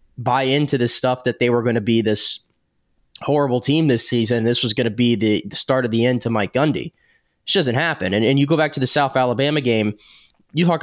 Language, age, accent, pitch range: English, 20-39, American, 115-145 Hz